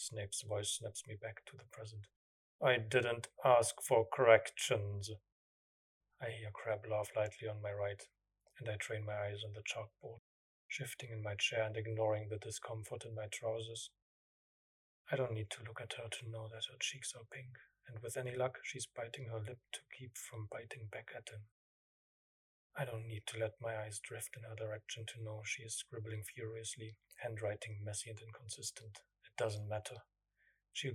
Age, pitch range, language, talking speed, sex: 30-49, 105-115 Hz, English, 180 wpm, male